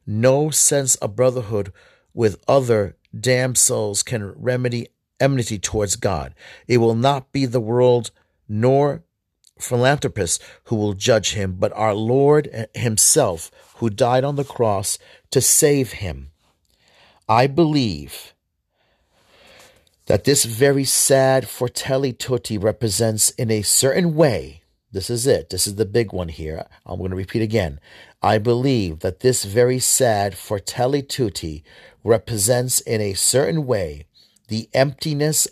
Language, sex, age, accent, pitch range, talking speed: English, male, 40-59, American, 100-130 Hz, 130 wpm